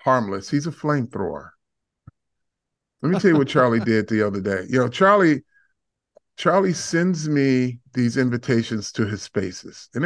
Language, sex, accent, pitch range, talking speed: English, male, American, 115-150 Hz, 155 wpm